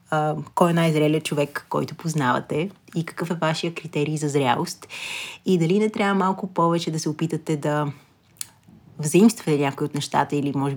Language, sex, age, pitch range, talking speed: Bulgarian, female, 20-39, 150-175 Hz, 165 wpm